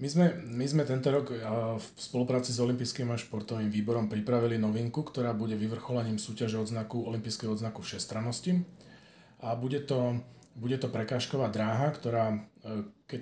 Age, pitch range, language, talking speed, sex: 40-59, 115-135 Hz, Slovak, 140 wpm, male